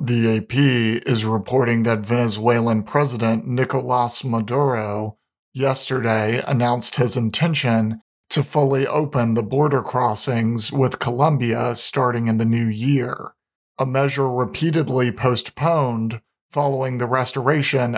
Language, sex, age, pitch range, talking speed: English, male, 40-59, 120-140 Hz, 110 wpm